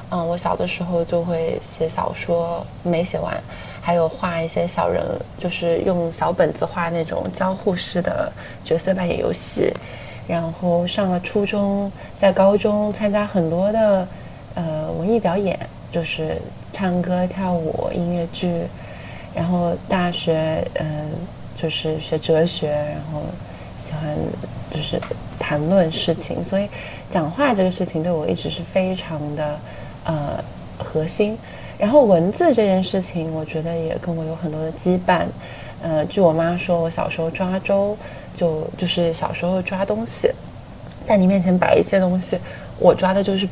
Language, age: Chinese, 20-39